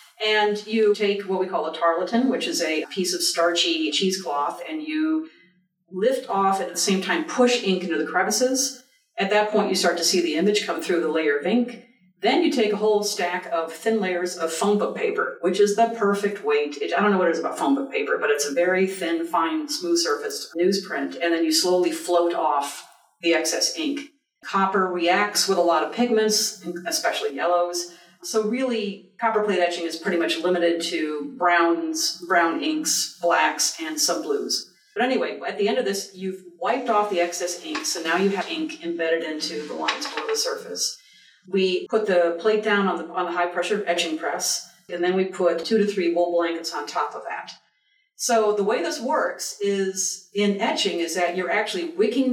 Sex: female